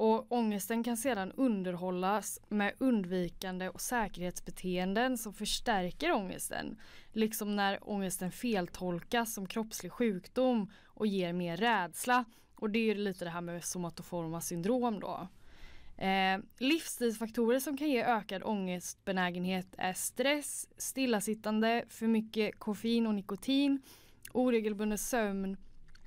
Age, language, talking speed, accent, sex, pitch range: 10-29, Swedish, 115 wpm, native, female, 185-230 Hz